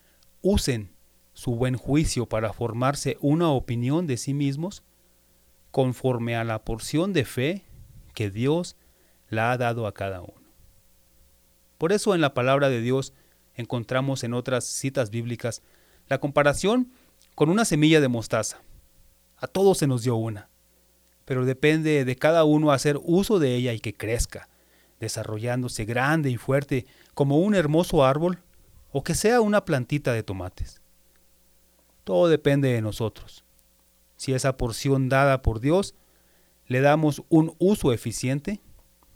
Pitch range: 100-145 Hz